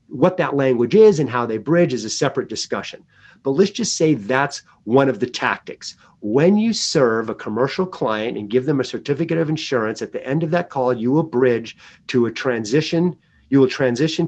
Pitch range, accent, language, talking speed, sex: 125-170 Hz, American, English, 205 wpm, male